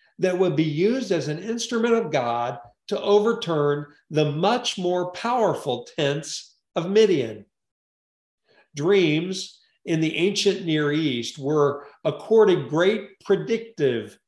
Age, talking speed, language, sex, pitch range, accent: 50-69, 120 wpm, English, male, 140-195 Hz, American